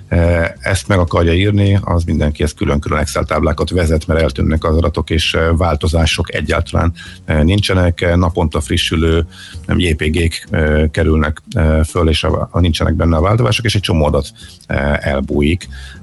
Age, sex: 50-69, male